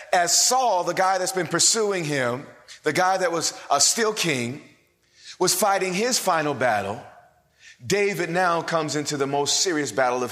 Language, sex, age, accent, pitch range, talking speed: English, male, 30-49, American, 150-205 Hz, 170 wpm